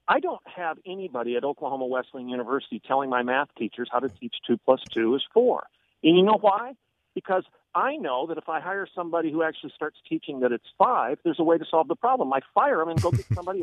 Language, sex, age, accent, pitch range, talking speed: English, male, 50-69, American, 160-240 Hz, 235 wpm